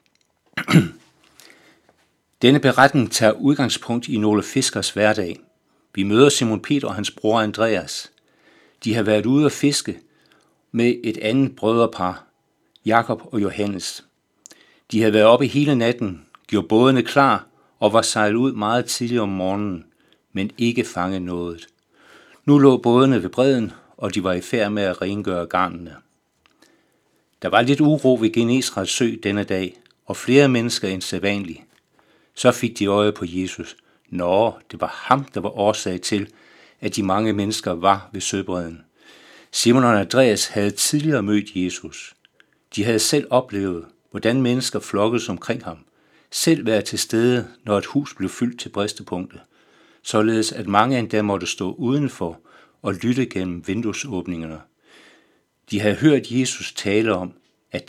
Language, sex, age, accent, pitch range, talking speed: Danish, male, 60-79, native, 100-125 Hz, 150 wpm